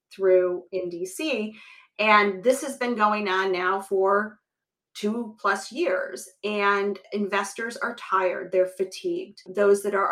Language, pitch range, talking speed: English, 185-215 Hz, 135 wpm